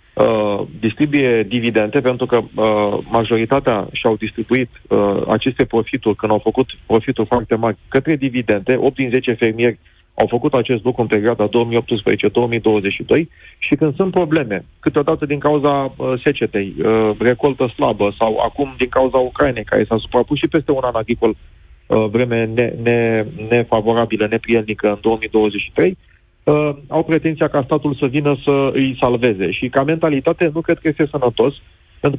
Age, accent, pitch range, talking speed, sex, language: 40-59, native, 115-145 Hz, 150 wpm, male, Romanian